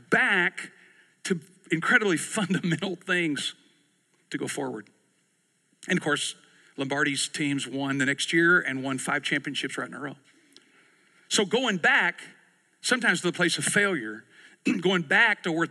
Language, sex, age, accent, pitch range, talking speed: English, male, 50-69, American, 150-185 Hz, 145 wpm